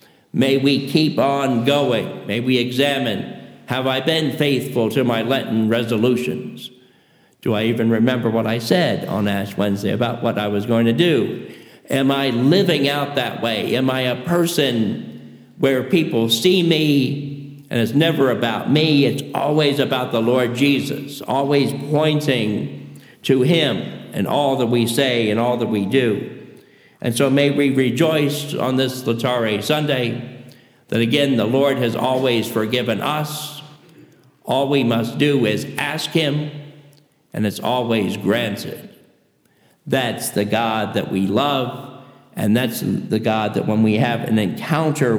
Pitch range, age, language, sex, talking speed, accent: 115-140 Hz, 50-69, English, male, 155 wpm, American